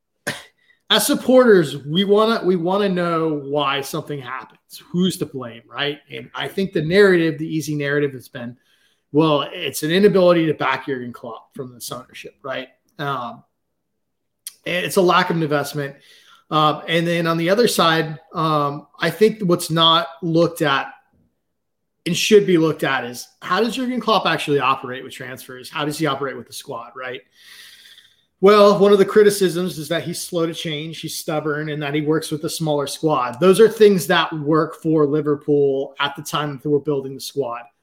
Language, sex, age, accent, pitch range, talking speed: English, male, 30-49, American, 140-180 Hz, 180 wpm